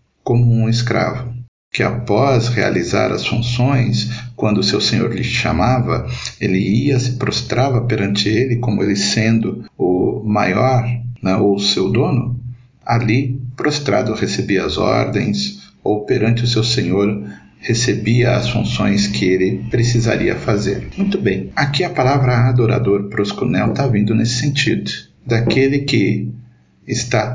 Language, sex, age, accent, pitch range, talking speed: Portuguese, male, 50-69, Brazilian, 110-125 Hz, 135 wpm